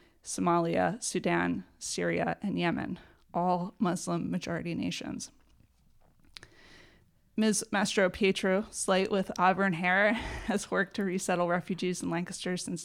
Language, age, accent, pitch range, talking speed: English, 20-39, American, 175-195 Hz, 105 wpm